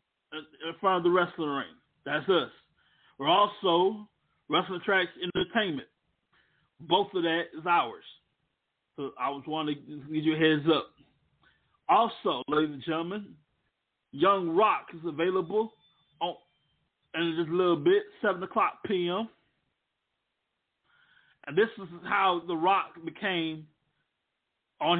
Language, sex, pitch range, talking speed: English, male, 160-185 Hz, 125 wpm